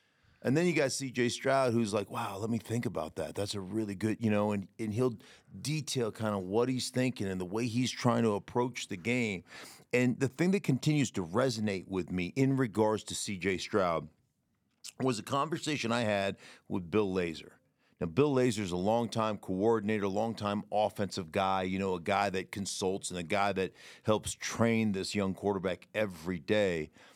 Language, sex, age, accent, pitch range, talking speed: English, male, 40-59, American, 100-125 Hz, 190 wpm